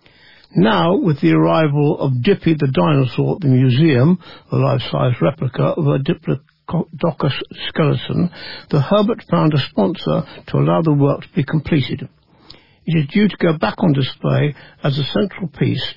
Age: 60-79